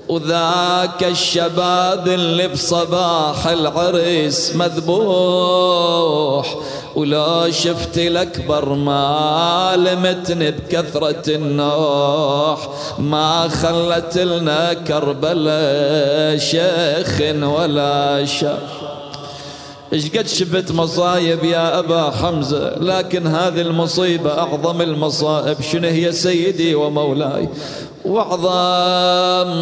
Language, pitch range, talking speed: Arabic, 150-180 Hz, 75 wpm